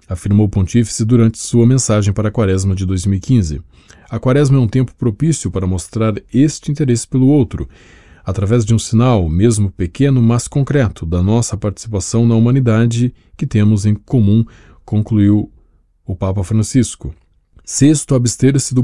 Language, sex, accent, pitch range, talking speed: Portuguese, male, Brazilian, 95-125 Hz, 150 wpm